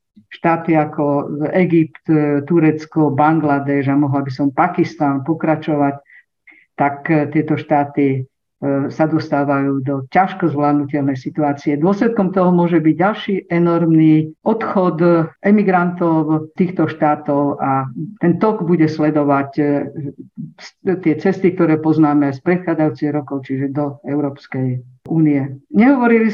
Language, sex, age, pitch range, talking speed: Slovak, female, 50-69, 145-175 Hz, 105 wpm